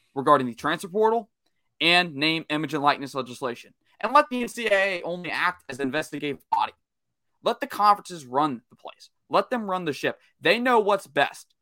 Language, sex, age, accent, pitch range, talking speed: English, male, 20-39, American, 135-180 Hz, 180 wpm